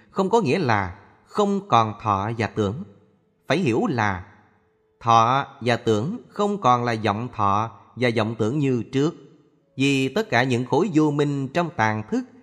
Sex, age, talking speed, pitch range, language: male, 20-39, 170 wpm, 105-145 Hz, Vietnamese